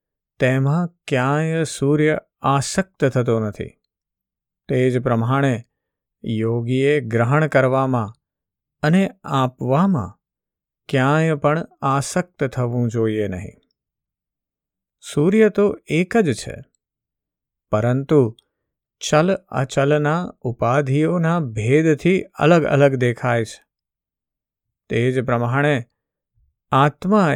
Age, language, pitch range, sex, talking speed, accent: 50-69, Gujarati, 115-150 Hz, male, 70 wpm, native